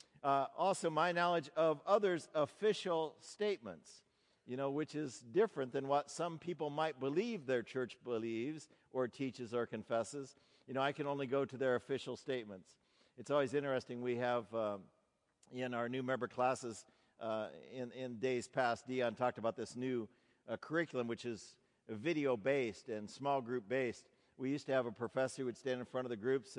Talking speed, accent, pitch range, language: 185 wpm, American, 120-145 Hz, English